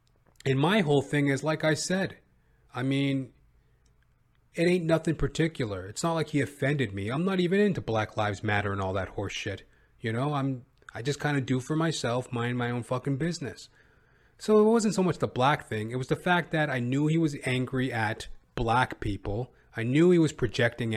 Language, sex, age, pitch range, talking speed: English, male, 30-49, 105-145 Hz, 210 wpm